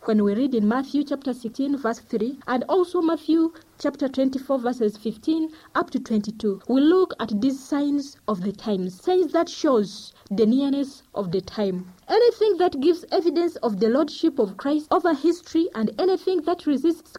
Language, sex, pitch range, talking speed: English, female, 220-320 Hz, 175 wpm